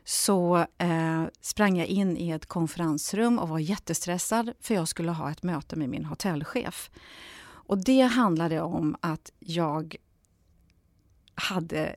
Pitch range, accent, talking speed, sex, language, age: 170-245 Hz, native, 130 wpm, female, Swedish, 40-59